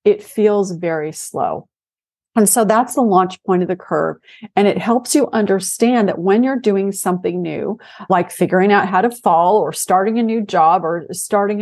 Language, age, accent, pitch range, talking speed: English, 40-59, American, 180-225 Hz, 190 wpm